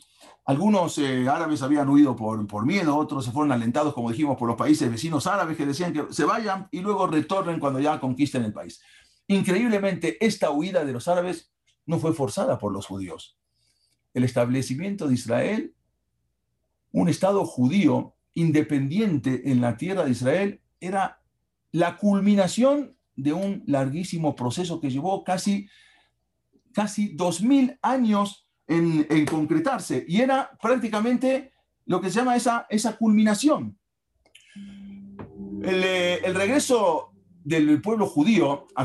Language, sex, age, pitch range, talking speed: English, male, 50-69, 130-200 Hz, 140 wpm